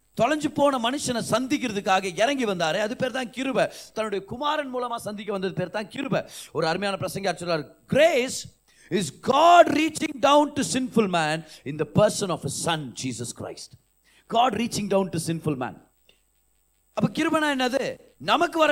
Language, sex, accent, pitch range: Tamil, male, native, 165-255 Hz